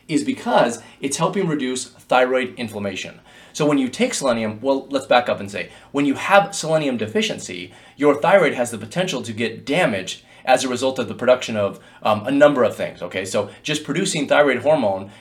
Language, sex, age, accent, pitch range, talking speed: English, male, 30-49, American, 115-170 Hz, 195 wpm